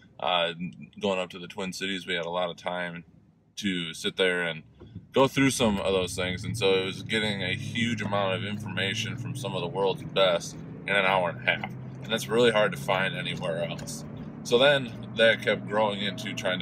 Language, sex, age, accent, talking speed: English, male, 20-39, American, 215 wpm